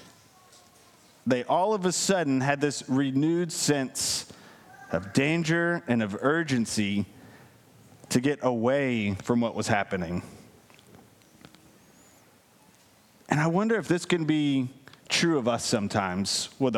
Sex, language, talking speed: male, English, 120 wpm